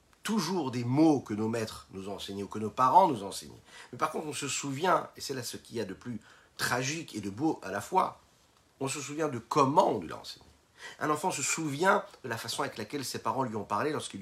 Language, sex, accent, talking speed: French, male, French, 260 wpm